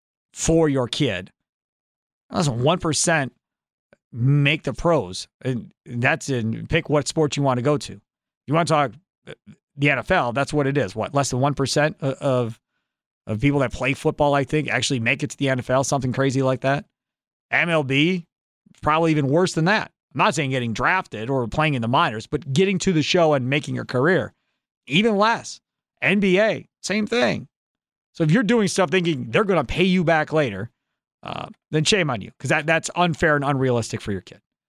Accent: American